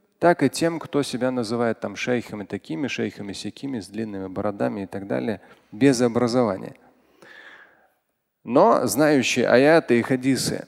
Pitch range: 130-185 Hz